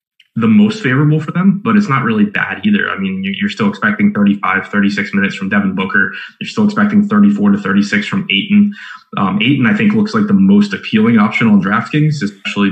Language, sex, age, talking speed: English, male, 20-39, 205 wpm